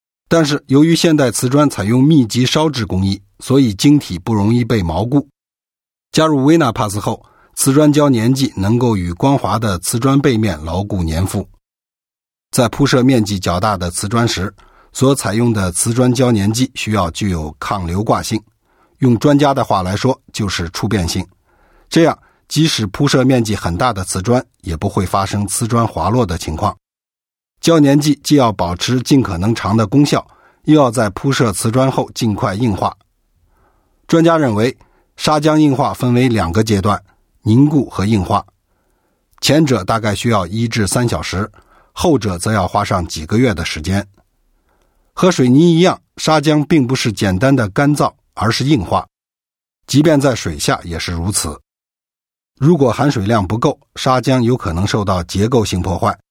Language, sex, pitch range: English, male, 100-135 Hz